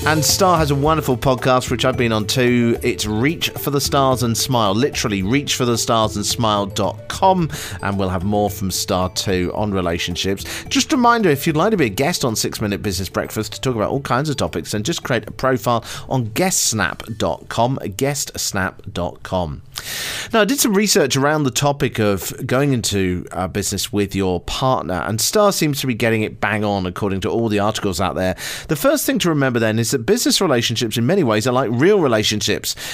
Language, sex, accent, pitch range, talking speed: English, male, British, 100-140 Hz, 195 wpm